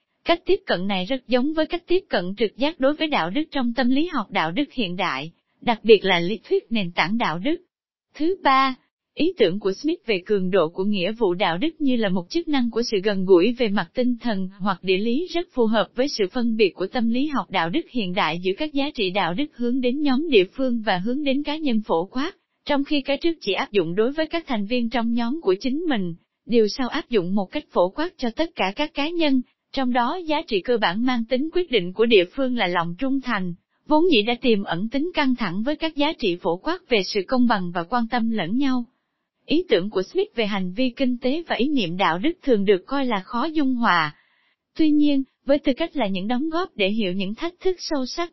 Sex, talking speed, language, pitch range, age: female, 255 wpm, Vietnamese, 210-295 Hz, 20-39